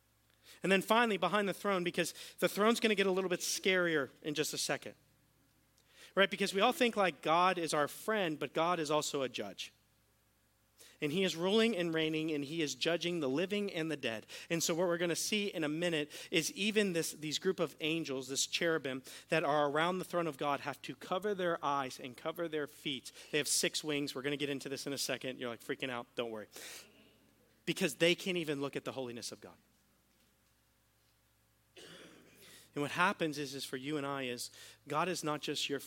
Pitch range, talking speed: 130-175 Hz, 220 wpm